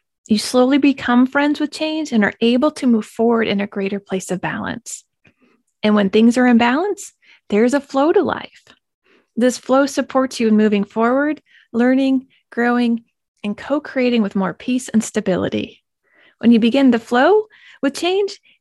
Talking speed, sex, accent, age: 170 wpm, female, American, 30-49